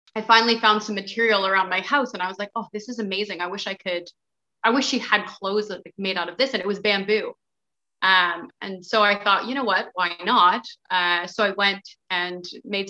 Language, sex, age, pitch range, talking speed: English, female, 20-39, 185-230 Hz, 230 wpm